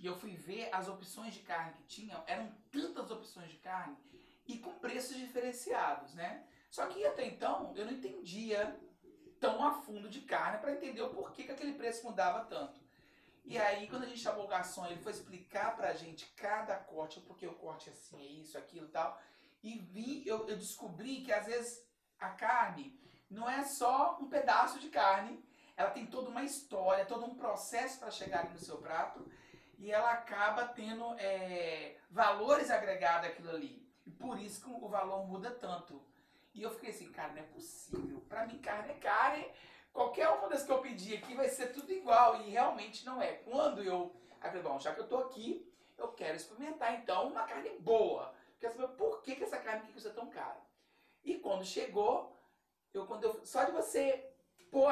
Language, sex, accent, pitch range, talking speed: Portuguese, male, Brazilian, 195-265 Hz, 190 wpm